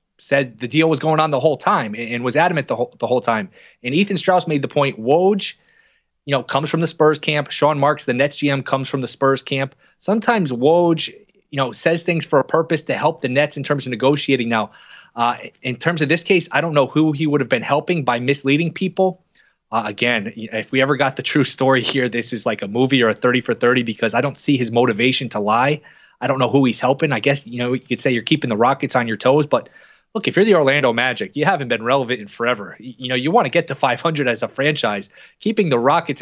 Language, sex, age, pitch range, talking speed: English, male, 20-39, 125-155 Hz, 255 wpm